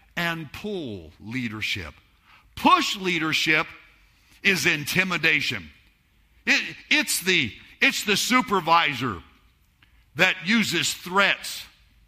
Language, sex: English, male